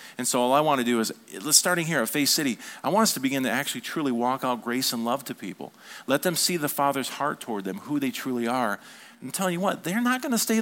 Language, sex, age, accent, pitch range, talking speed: English, male, 40-59, American, 120-195 Hz, 275 wpm